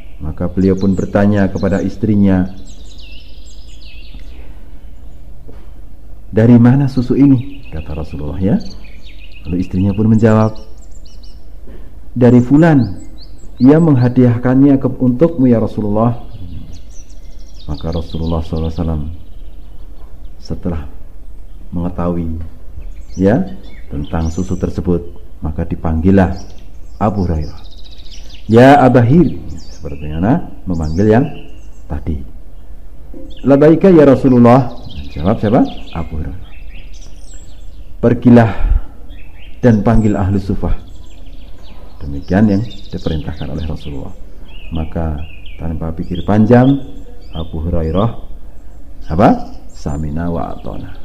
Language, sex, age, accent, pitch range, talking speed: Indonesian, male, 50-69, native, 80-105 Hz, 80 wpm